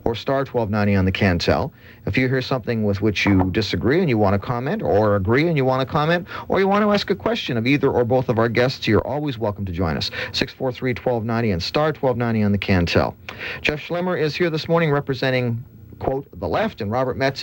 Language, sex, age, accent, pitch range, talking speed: English, male, 40-59, American, 105-145 Hz, 225 wpm